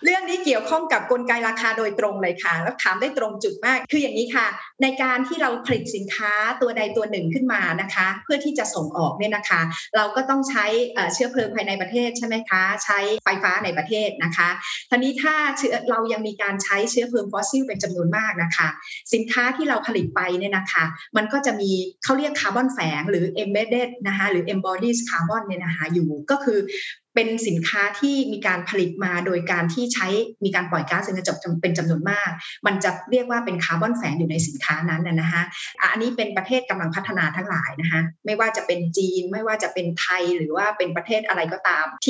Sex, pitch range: female, 180-235 Hz